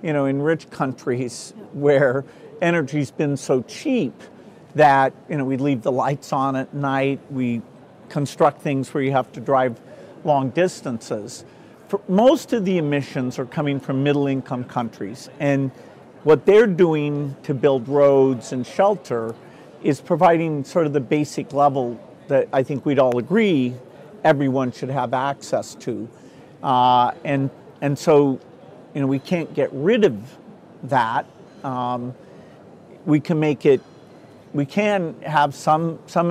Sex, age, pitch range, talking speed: male, 50-69, 130-160 Hz, 145 wpm